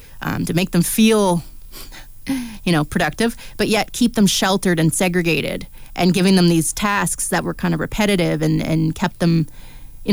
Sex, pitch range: female, 160-200 Hz